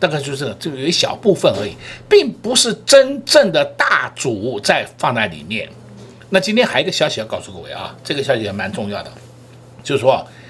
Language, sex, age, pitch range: Chinese, male, 60-79, 125-200 Hz